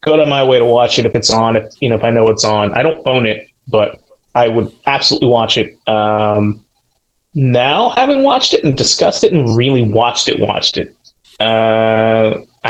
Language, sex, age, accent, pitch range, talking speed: English, male, 30-49, American, 110-145 Hz, 205 wpm